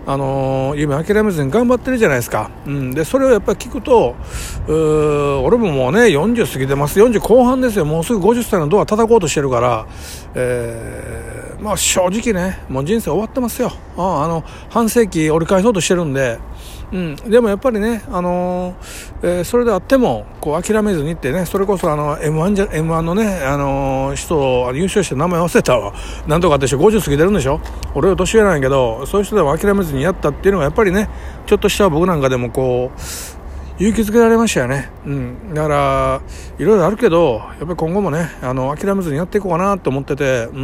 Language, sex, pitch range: Japanese, male, 130-205 Hz